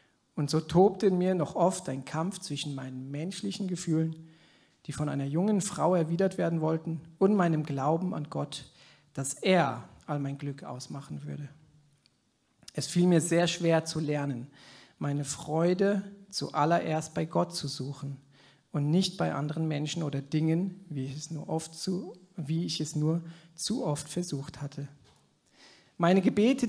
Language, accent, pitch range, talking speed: German, German, 145-185 Hz, 155 wpm